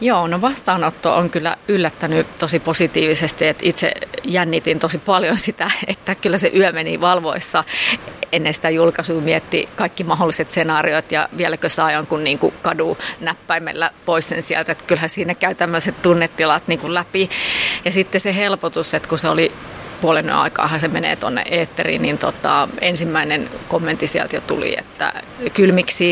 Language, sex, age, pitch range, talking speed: Finnish, female, 30-49, 160-185 Hz, 155 wpm